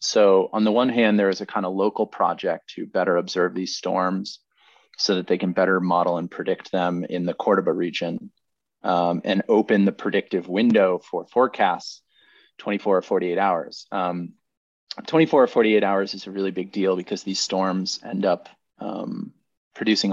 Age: 30-49